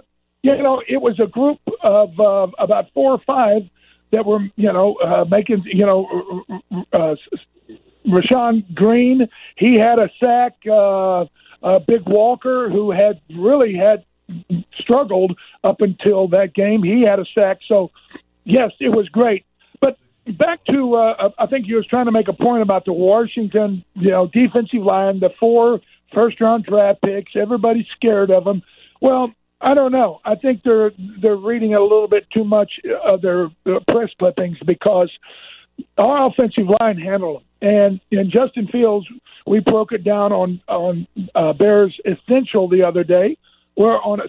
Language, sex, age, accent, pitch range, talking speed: English, male, 50-69, American, 190-240 Hz, 160 wpm